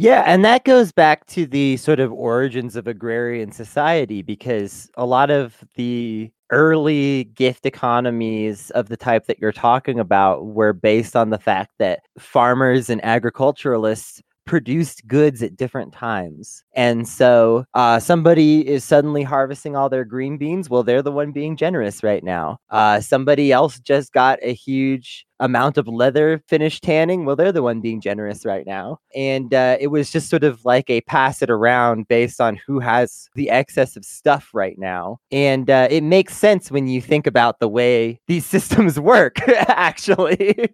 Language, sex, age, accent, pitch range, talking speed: English, male, 30-49, American, 115-145 Hz, 175 wpm